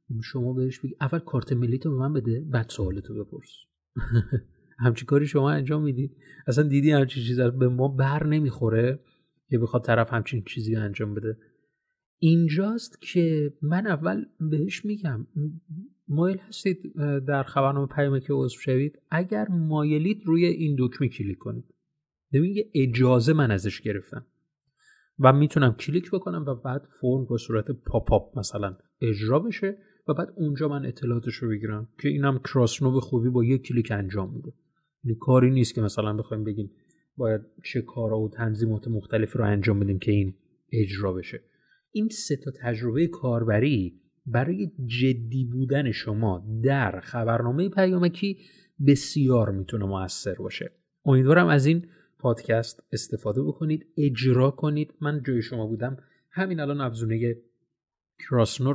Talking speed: 145 wpm